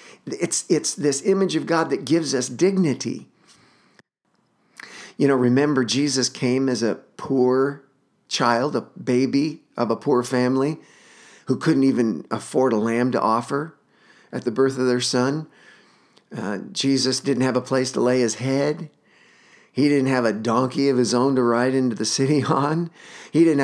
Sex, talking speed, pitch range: male, 165 wpm, 120-140 Hz